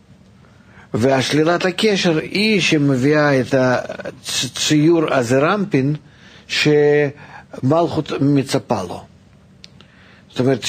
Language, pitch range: Hebrew, 120-160 Hz